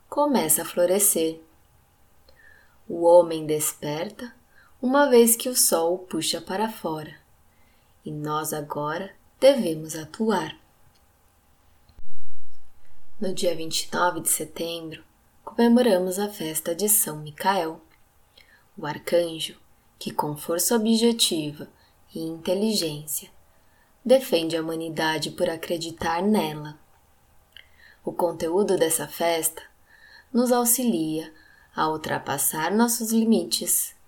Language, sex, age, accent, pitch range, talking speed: Portuguese, female, 20-39, Brazilian, 155-210 Hz, 95 wpm